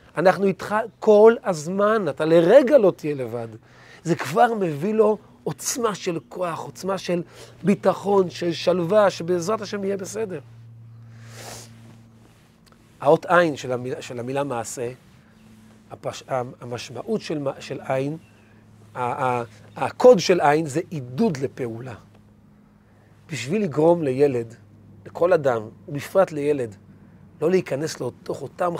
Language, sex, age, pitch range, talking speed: Hebrew, male, 40-59, 125-185 Hz, 110 wpm